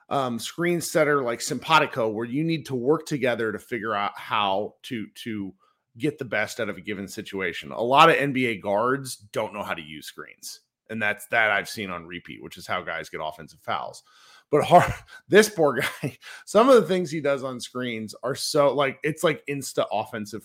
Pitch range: 115-180 Hz